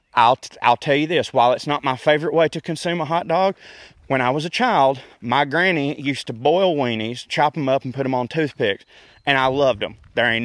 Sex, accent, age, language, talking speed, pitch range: male, American, 30-49, English, 235 wpm, 130-160 Hz